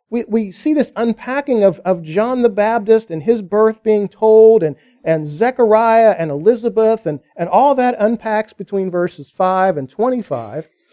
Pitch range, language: 180-235 Hz, English